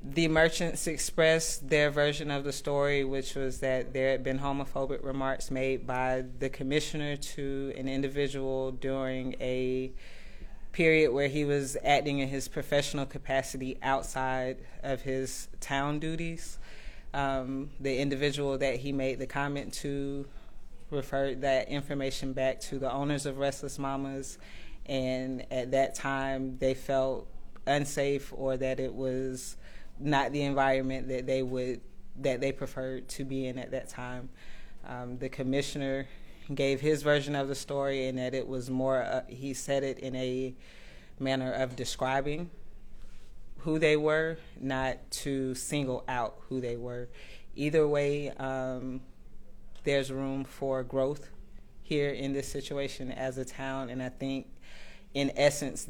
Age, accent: 30-49, American